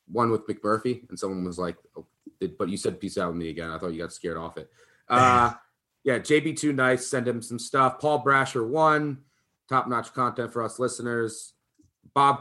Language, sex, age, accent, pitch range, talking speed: English, male, 30-49, American, 100-130 Hz, 205 wpm